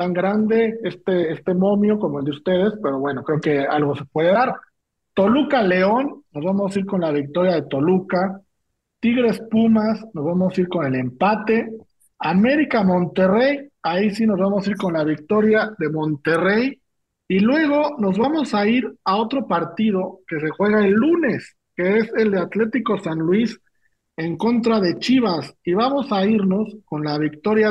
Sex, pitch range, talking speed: male, 165-225 Hz, 180 wpm